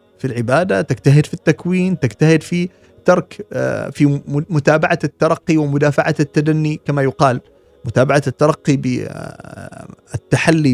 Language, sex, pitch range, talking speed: English, male, 115-150 Hz, 100 wpm